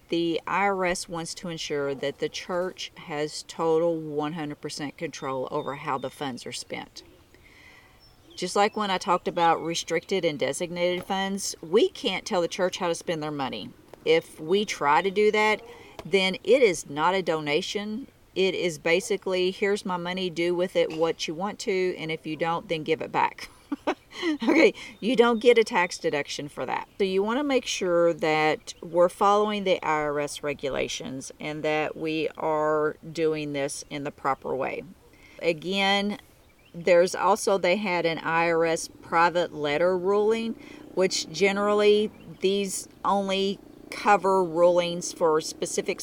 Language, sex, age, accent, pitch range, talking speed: English, female, 40-59, American, 160-200 Hz, 155 wpm